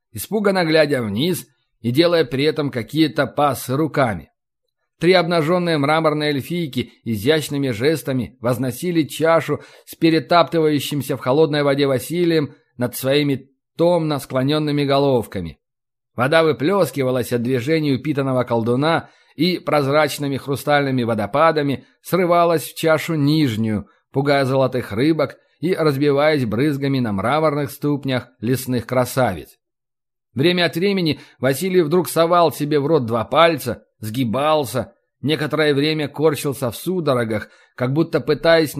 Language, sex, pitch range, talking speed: Russian, male, 125-160 Hz, 115 wpm